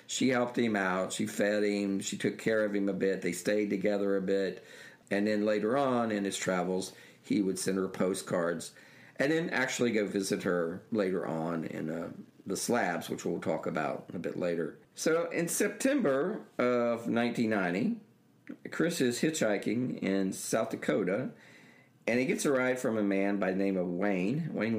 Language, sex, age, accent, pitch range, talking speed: English, male, 50-69, American, 100-125 Hz, 180 wpm